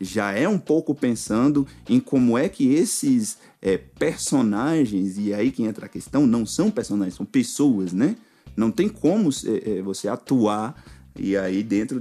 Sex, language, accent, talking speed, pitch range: male, Portuguese, Brazilian, 170 wpm, 105-165 Hz